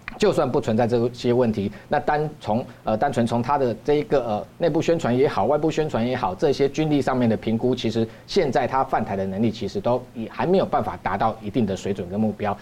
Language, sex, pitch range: Chinese, male, 110-140 Hz